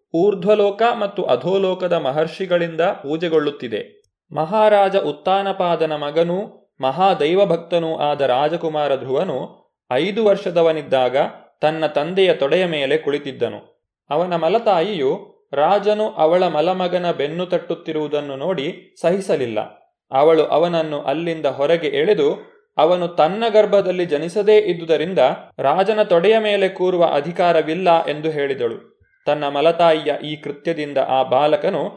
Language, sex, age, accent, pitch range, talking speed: Kannada, male, 20-39, native, 155-200 Hz, 95 wpm